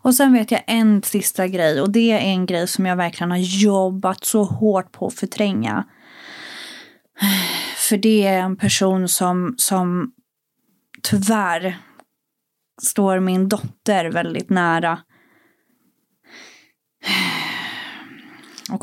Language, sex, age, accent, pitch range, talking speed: Swedish, female, 20-39, native, 185-225 Hz, 115 wpm